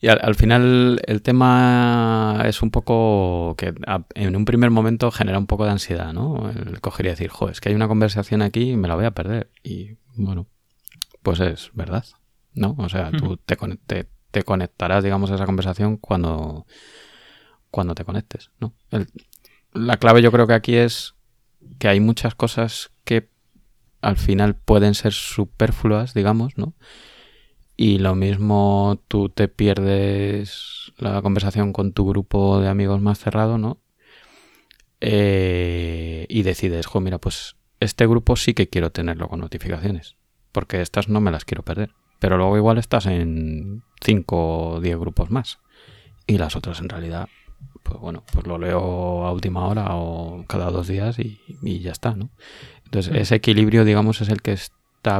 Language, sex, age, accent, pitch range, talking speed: Spanish, male, 20-39, Spanish, 95-115 Hz, 170 wpm